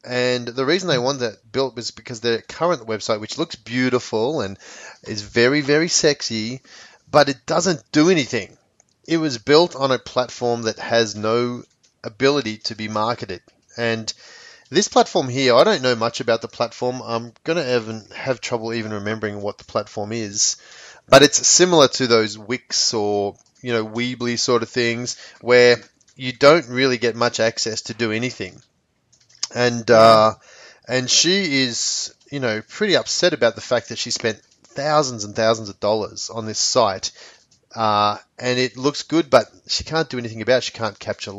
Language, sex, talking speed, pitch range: English, male, 175 wpm, 110-135 Hz